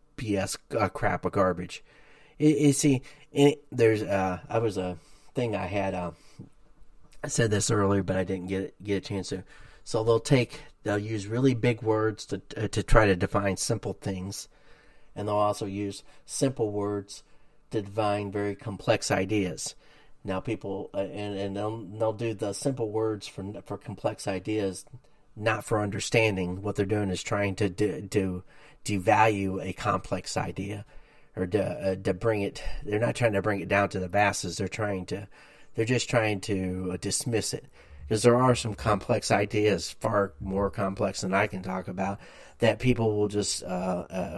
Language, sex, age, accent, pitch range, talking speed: English, male, 30-49, American, 95-120 Hz, 180 wpm